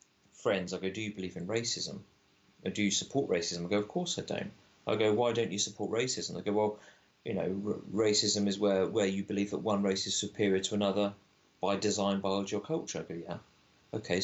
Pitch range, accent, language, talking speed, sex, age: 100-115 Hz, British, English, 225 wpm, male, 30-49